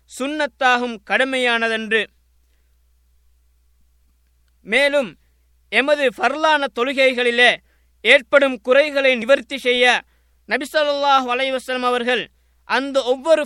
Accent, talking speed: native, 65 wpm